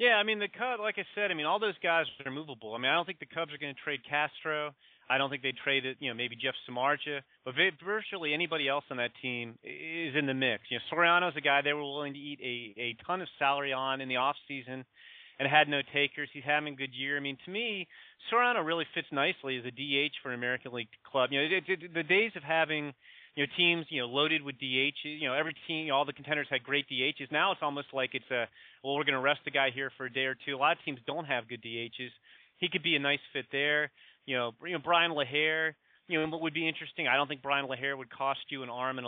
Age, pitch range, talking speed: 30-49, 135-160 Hz, 275 wpm